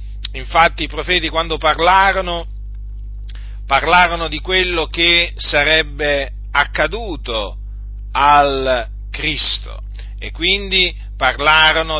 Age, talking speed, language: 50-69, 80 wpm, Italian